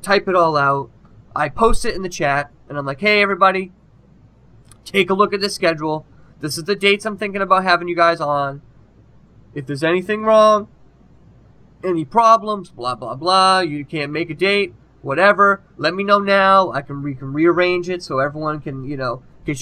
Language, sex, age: English, male, 20-39